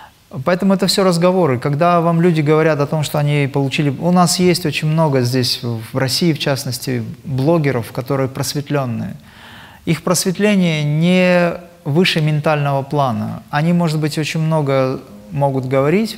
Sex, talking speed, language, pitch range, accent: male, 145 wpm, Russian, 135-170 Hz, native